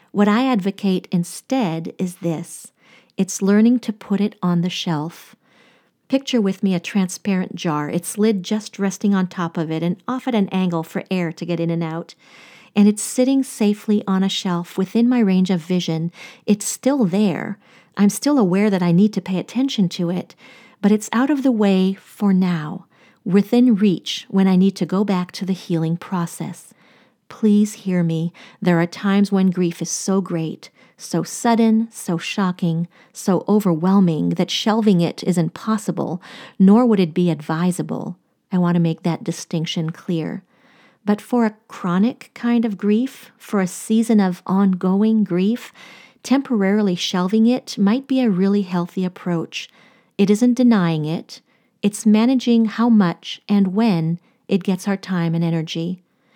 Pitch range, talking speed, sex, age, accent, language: 175-225 Hz, 170 wpm, female, 40-59, American, English